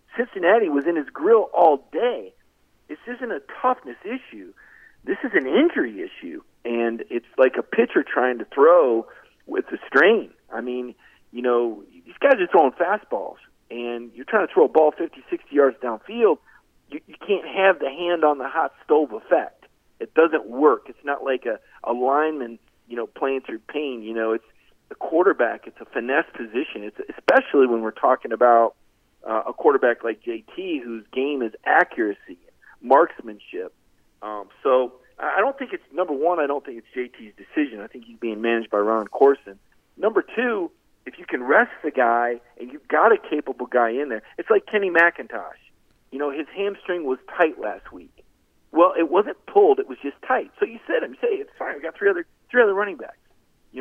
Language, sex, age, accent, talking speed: English, male, 40-59, American, 190 wpm